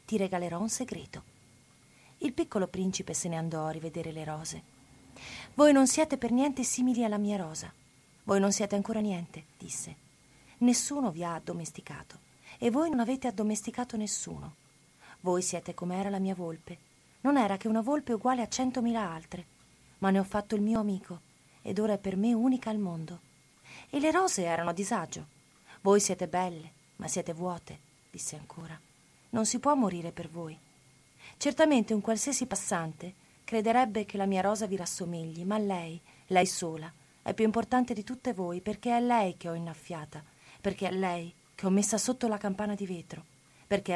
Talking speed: 175 wpm